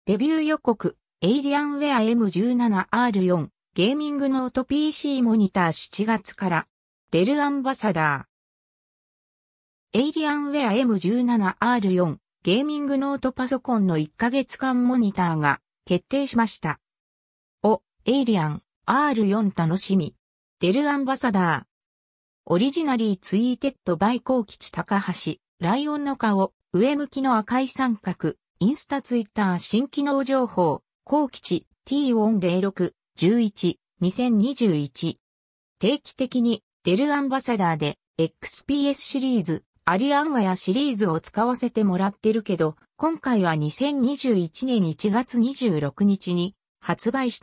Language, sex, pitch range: Japanese, female, 180-265 Hz